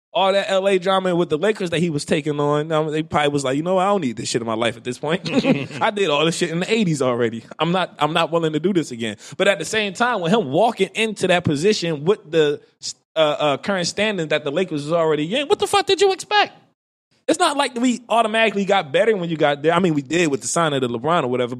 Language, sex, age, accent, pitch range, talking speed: English, male, 20-39, American, 145-200 Hz, 270 wpm